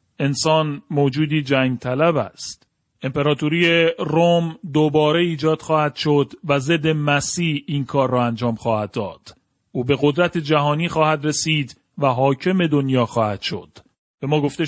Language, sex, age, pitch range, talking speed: Persian, male, 40-59, 135-165 Hz, 140 wpm